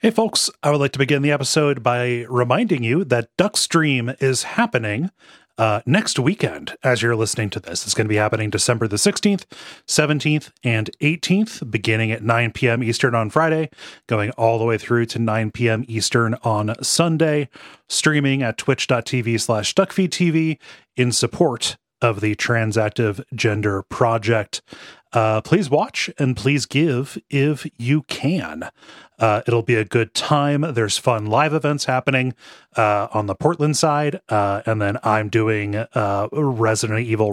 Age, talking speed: 30-49, 160 wpm